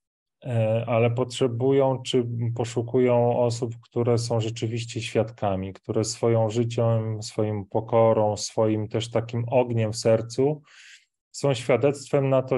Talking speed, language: 115 wpm, Polish